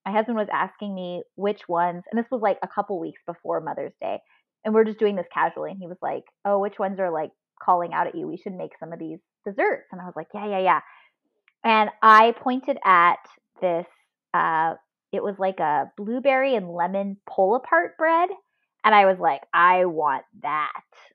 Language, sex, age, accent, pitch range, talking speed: English, female, 20-39, American, 190-250 Hz, 205 wpm